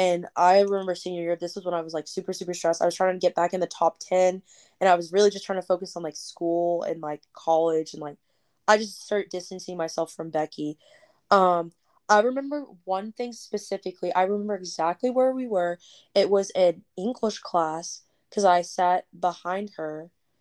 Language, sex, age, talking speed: English, female, 20-39, 205 wpm